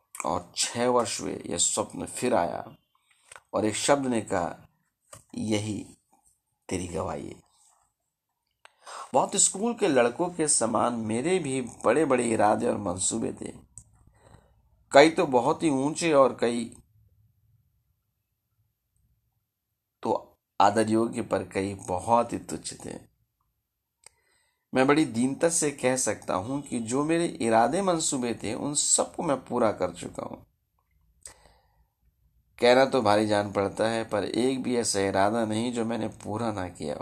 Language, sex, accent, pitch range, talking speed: Hindi, male, native, 95-130 Hz, 140 wpm